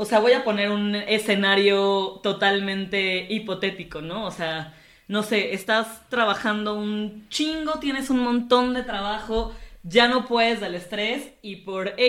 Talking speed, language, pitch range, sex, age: 150 wpm, Spanish, 195-245 Hz, female, 20-39